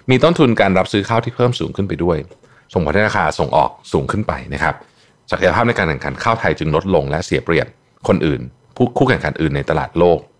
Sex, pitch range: male, 75-120 Hz